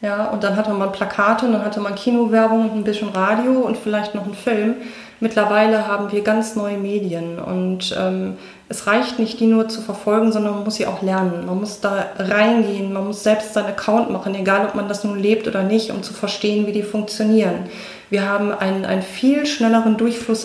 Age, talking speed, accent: 30-49, 210 wpm, German